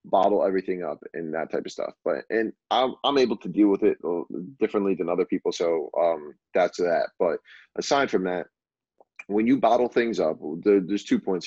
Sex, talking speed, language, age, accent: male, 200 wpm, English, 30-49, American